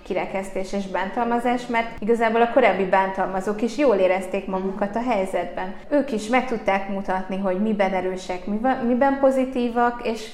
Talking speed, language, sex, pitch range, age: 145 wpm, Hungarian, female, 180-215 Hz, 20-39